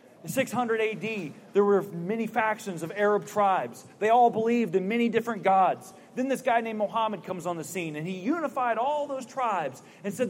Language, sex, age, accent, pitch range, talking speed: English, male, 30-49, American, 190-240 Hz, 200 wpm